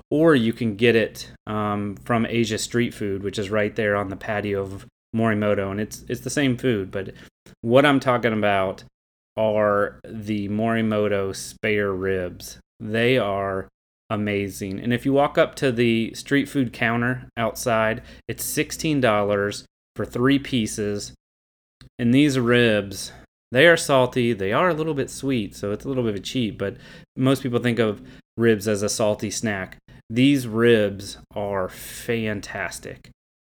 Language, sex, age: English, male, 30-49